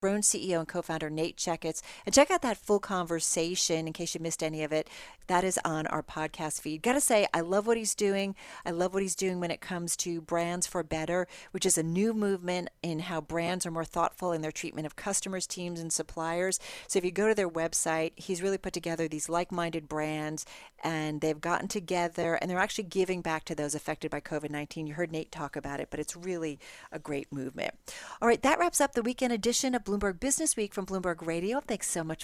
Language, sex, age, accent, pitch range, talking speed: English, female, 40-59, American, 165-205 Hz, 225 wpm